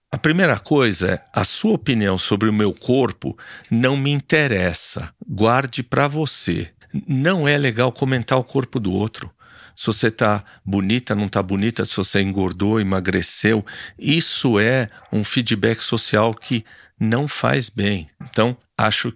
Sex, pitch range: male, 100-130 Hz